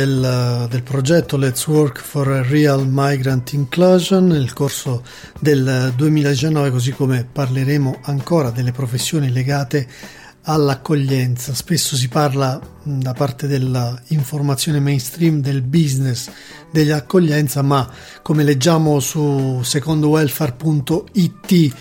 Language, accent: Italian, native